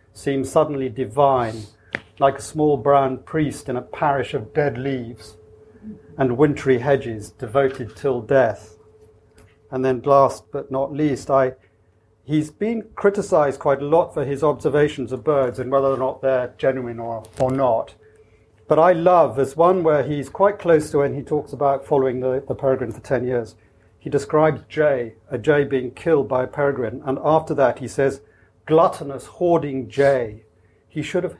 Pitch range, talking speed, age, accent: 120-150 Hz, 170 wpm, 40-59, British